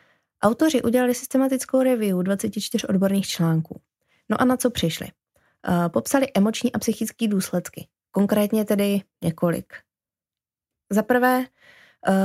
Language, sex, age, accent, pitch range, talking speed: Czech, female, 20-39, native, 190-225 Hz, 110 wpm